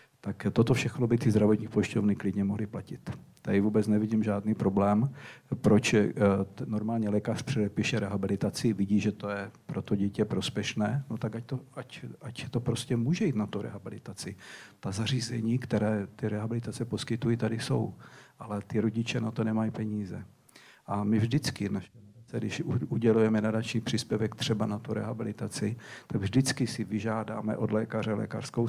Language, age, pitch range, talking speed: Czech, 50-69, 105-120 Hz, 150 wpm